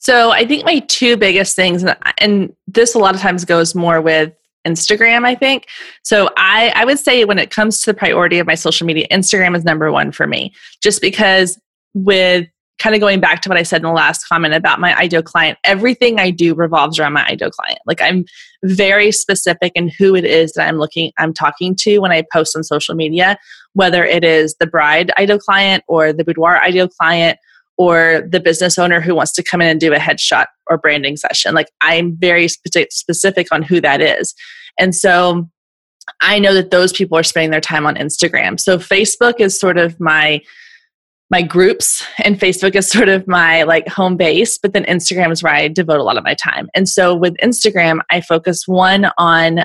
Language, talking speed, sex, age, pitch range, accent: English, 210 wpm, female, 20-39, 165-195 Hz, American